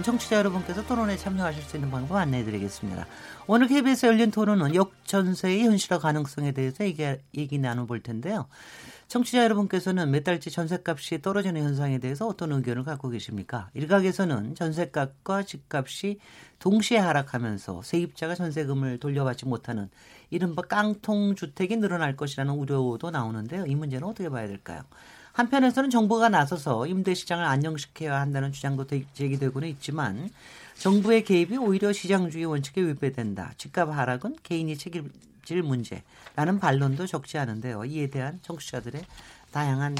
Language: Korean